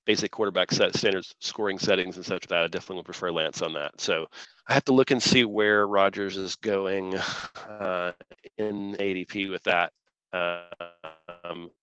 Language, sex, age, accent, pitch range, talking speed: English, male, 30-49, American, 95-115 Hz, 170 wpm